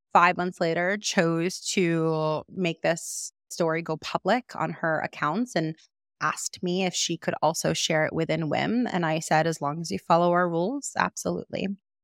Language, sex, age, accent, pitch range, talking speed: English, female, 30-49, American, 165-215 Hz, 175 wpm